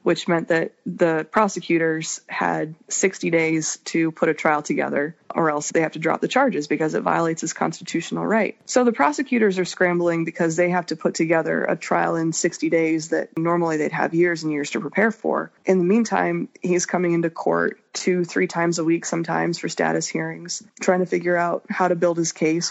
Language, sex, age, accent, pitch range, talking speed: English, female, 20-39, American, 165-190 Hz, 205 wpm